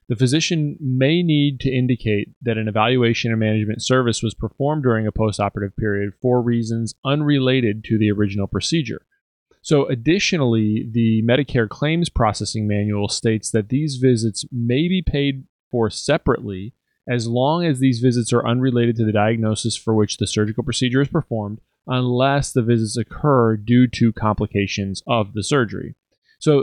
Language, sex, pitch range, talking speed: English, male, 110-135 Hz, 155 wpm